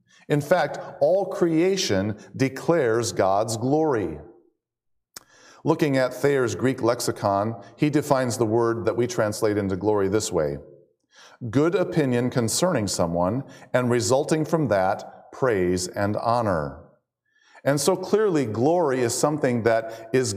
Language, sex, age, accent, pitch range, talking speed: English, male, 40-59, American, 105-145 Hz, 125 wpm